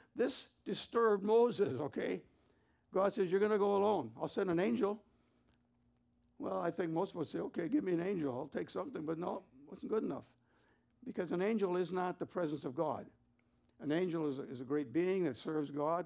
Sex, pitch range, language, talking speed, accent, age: male, 150-195 Hz, English, 205 wpm, American, 60-79